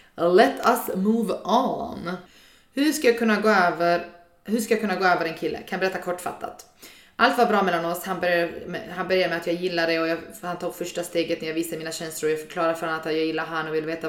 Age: 20-39